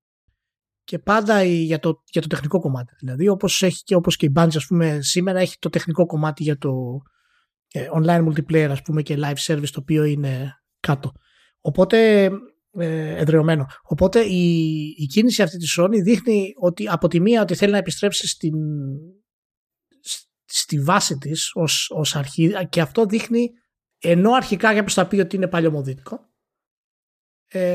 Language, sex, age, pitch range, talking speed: Greek, male, 20-39, 155-205 Hz, 160 wpm